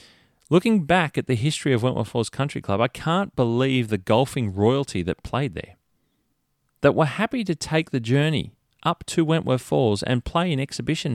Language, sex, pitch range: English, male, 105-145 Hz